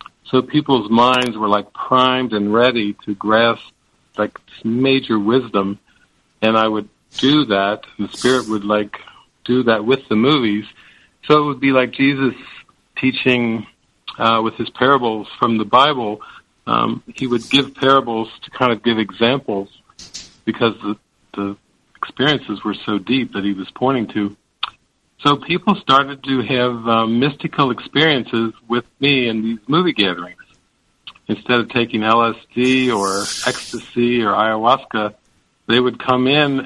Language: English